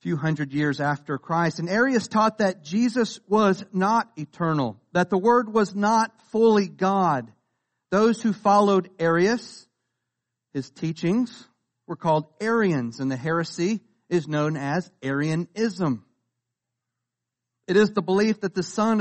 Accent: American